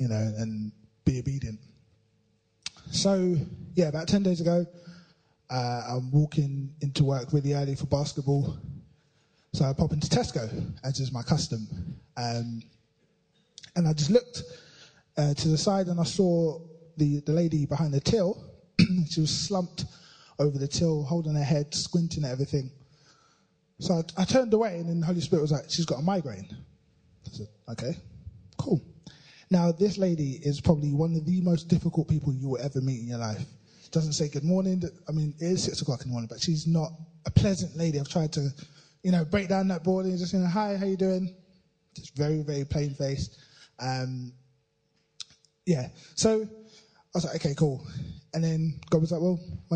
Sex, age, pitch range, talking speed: male, 20-39, 140-175 Hz, 185 wpm